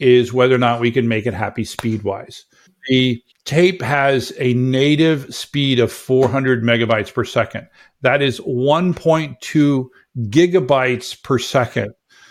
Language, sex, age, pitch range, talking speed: English, male, 50-69, 120-155 Hz, 150 wpm